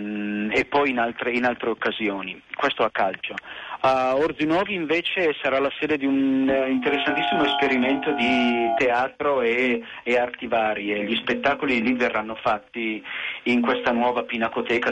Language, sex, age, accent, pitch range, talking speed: Italian, male, 40-59, native, 115-130 Hz, 150 wpm